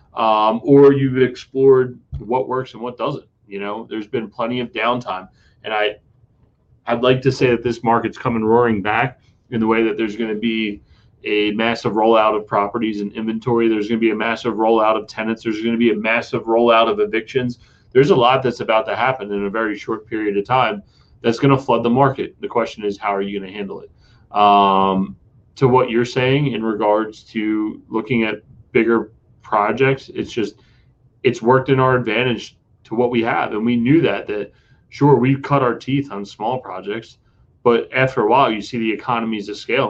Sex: male